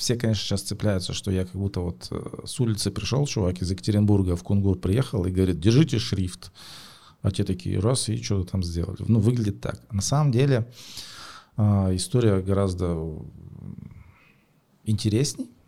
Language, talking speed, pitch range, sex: Russian, 145 wpm, 95-115 Hz, male